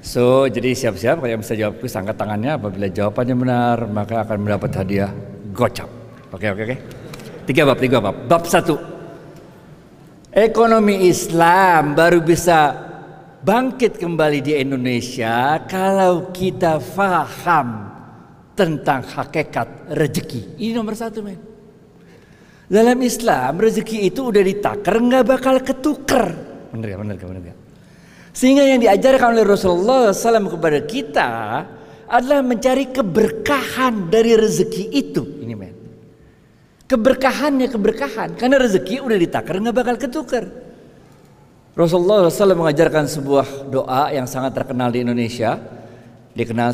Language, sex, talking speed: Indonesian, male, 120 wpm